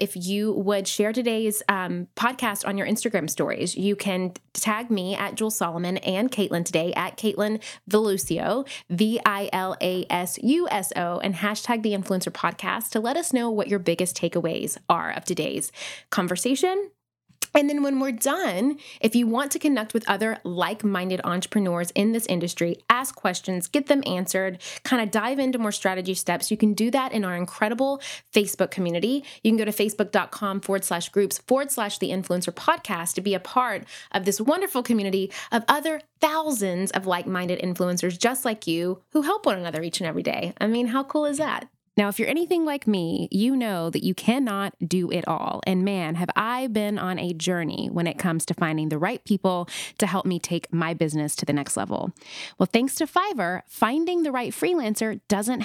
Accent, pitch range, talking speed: American, 185-250 Hz, 185 wpm